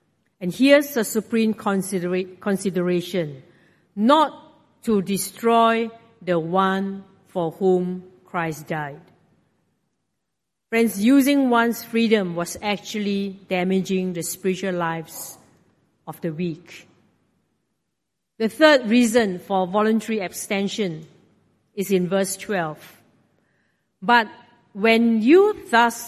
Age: 50-69